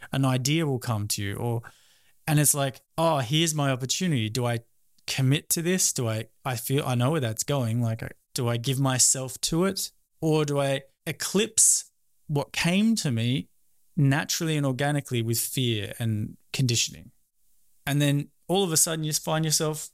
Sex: male